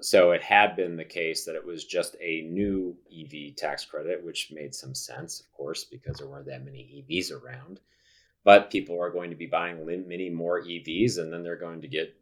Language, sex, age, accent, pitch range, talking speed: English, male, 30-49, American, 80-115 Hz, 215 wpm